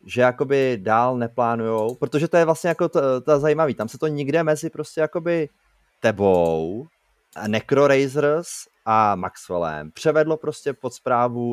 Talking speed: 140 wpm